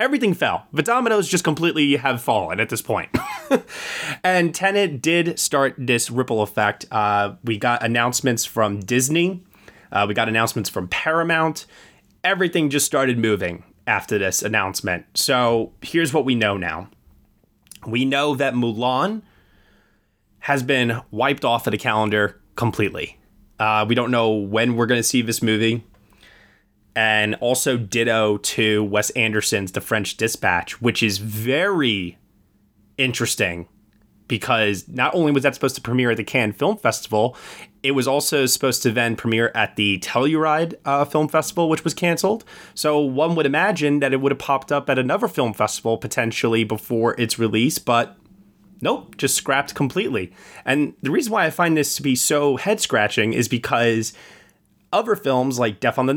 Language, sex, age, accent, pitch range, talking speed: English, male, 20-39, American, 110-145 Hz, 160 wpm